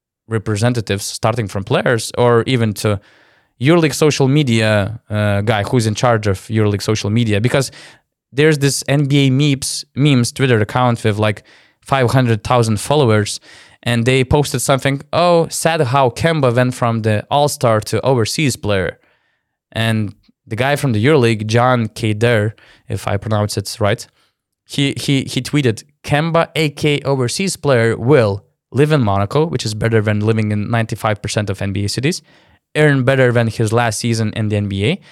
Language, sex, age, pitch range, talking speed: English, male, 20-39, 110-135 Hz, 150 wpm